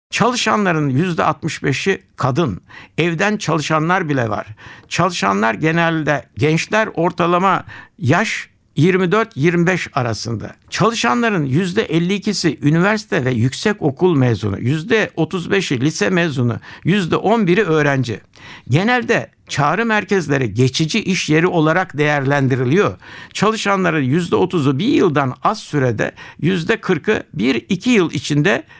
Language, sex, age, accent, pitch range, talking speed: Turkish, male, 60-79, native, 135-185 Hz, 90 wpm